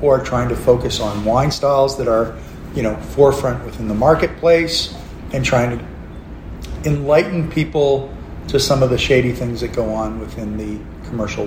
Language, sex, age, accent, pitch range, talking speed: English, male, 40-59, American, 100-135 Hz, 165 wpm